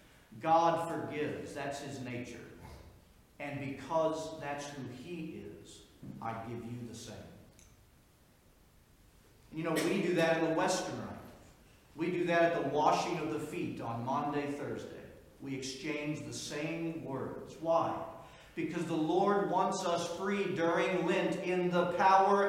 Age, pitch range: 50-69, 135-175 Hz